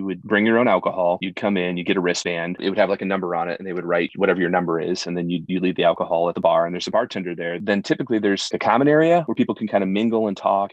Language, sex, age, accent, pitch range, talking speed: English, male, 30-49, American, 95-105 Hz, 325 wpm